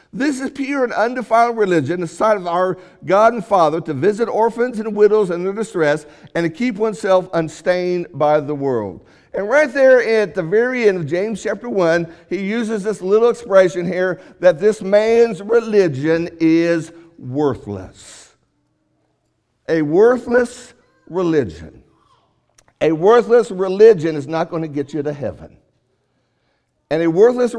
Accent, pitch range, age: American, 160-230 Hz, 60-79